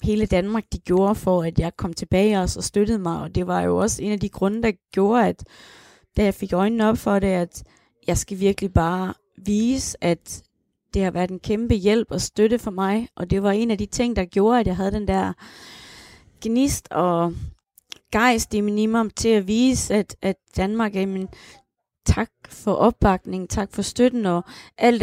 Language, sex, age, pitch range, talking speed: Danish, female, 20-39, 190-220 Hz, 200 wpm